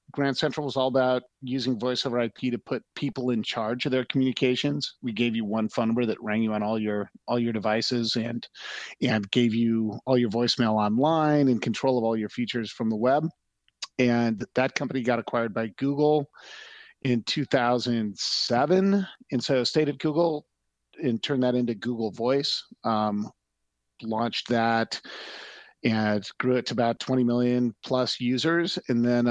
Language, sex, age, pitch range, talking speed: English, male, 40-59, 115-140 Hz, 170 wpm